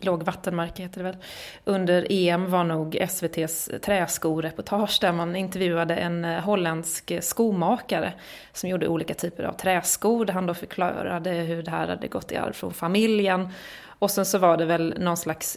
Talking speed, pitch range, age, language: 165 wpm, 175-210 Hz, 30-49, English